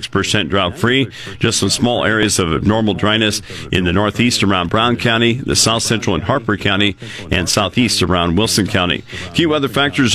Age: 50-69